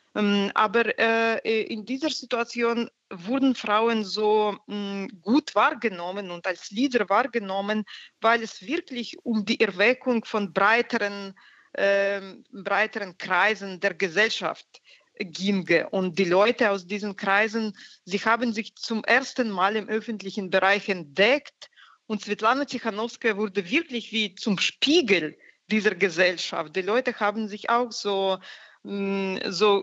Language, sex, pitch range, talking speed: German, female, 200-235 Hz, 125 wpm